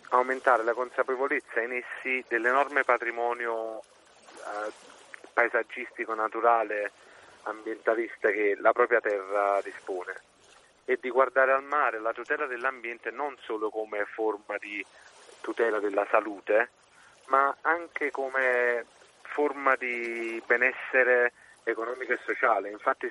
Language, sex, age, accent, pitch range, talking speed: Italian, male, 40-59, native, 115-135 Hz, 110 wpm